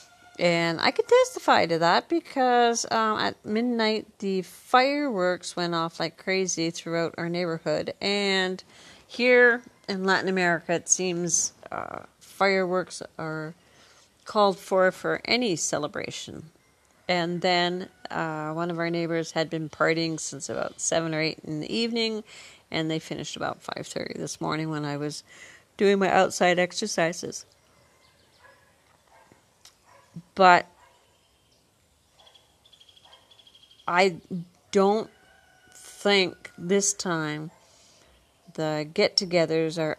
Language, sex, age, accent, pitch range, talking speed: English, female, 50-69, American, 155-190 Hz, 115 wpm